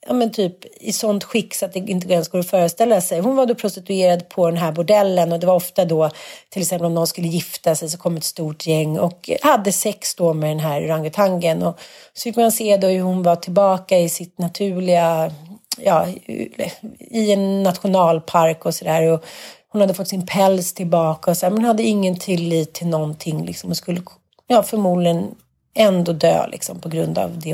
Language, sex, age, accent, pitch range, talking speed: Swedish, female, 40-59, native, 170-220 Hz, 205 wpm